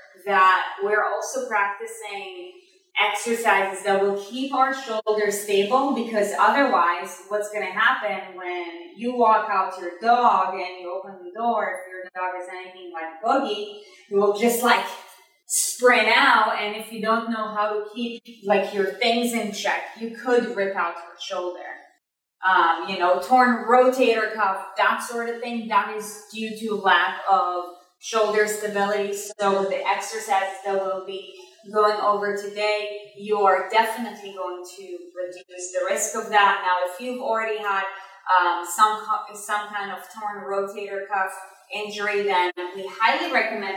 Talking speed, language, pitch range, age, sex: 160 wpm, English, 190-230 Hz, 20-39, female